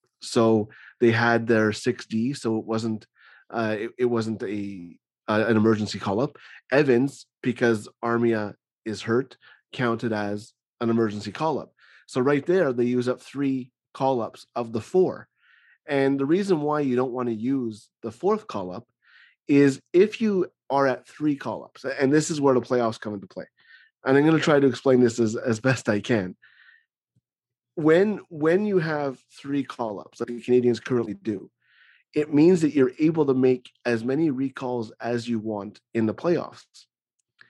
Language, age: English, 30-49